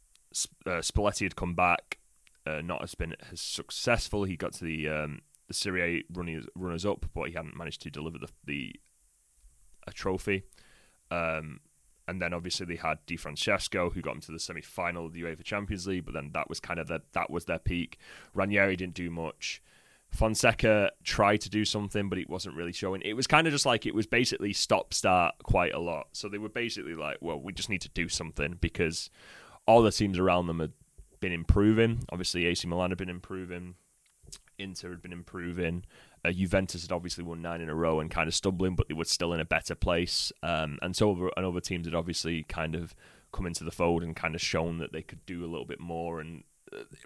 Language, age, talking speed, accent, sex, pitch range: English, 20-39, 215 wpm, British, male, 85-100 Hz